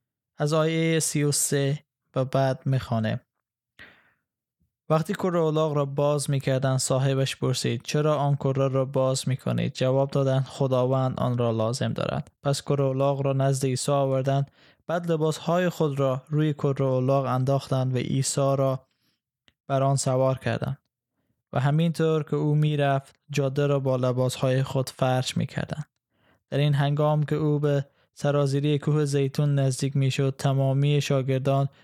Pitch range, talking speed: 130-145 Hz, 145 wpm